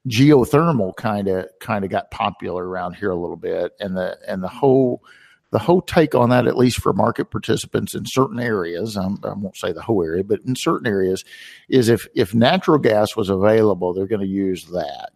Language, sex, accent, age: English, male, American, 50-69